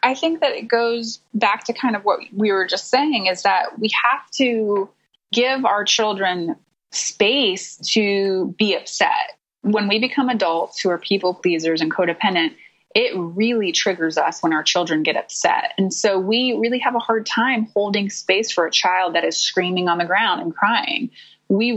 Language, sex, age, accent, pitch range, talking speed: English, female, 20-39, American, 180-235 Hz, 185 wpm